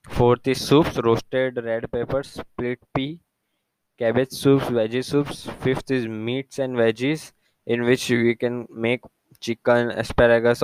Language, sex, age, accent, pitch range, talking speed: English, male, 10-29, Indian, 115-130 Hz, 135 wpm